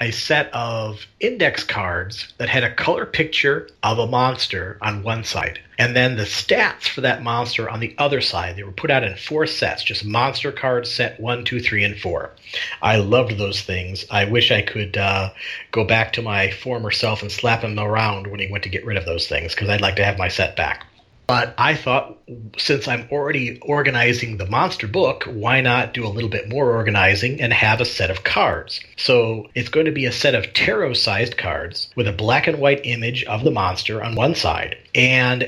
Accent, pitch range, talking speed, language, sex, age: American, 105-125 Hz, 210 wpm, English, male, 40-59